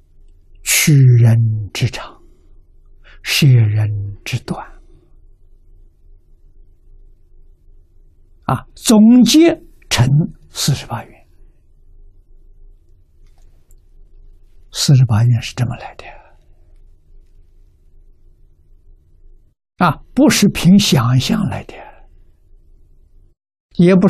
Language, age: Chinese, 60-79